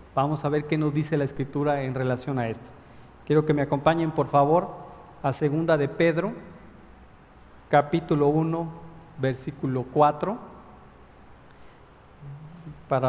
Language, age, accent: Spanish, 40-59, Mexican